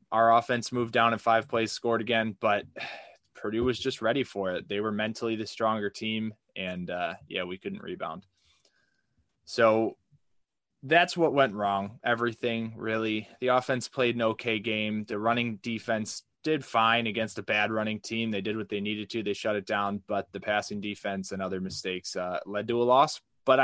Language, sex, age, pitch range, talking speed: English, male, 20-39, 105-125 Hz, 190 wpm